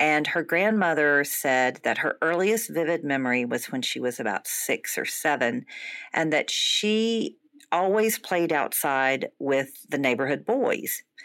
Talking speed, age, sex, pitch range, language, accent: 145 wpm, 50-69, female, 150-205 Hz, English, American